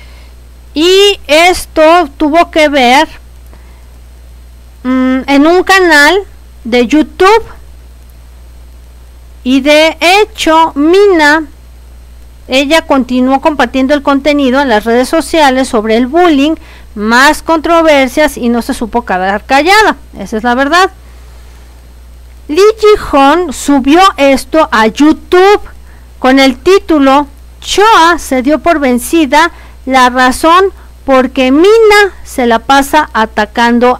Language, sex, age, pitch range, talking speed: Spanish, female, 40-59, 230-330 Hz, 110 wpm